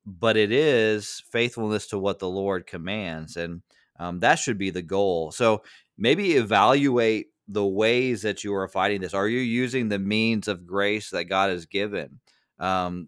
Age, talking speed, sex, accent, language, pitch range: 30-49, 175 wpm, male, American, English, 90-110 Hz